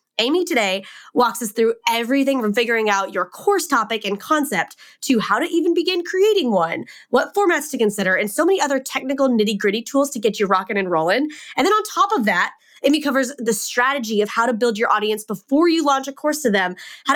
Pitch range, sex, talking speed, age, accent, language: 205-275 Hz, female, 220 wpm, 20-39, American, English